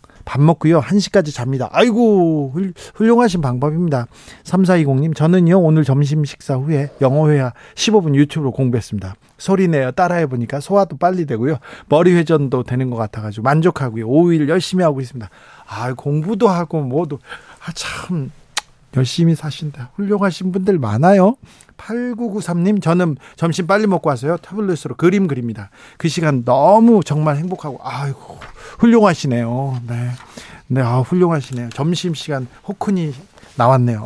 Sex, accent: male, native